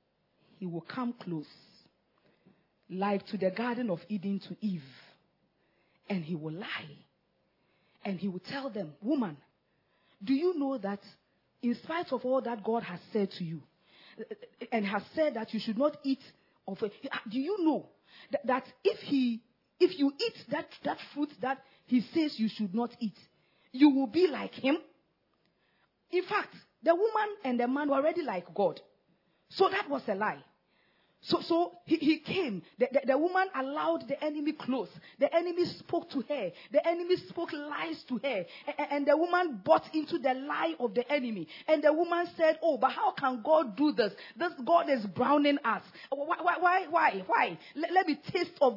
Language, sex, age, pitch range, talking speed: English, female, 40-59, 205-320 Hz, 180 wpm